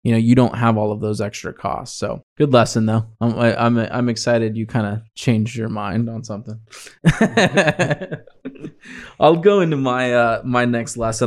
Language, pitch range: English, 110-125 Hz